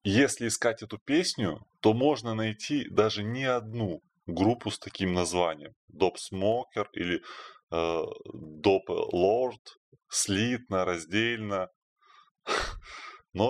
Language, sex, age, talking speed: Russian, male, 20-39, 100 wpm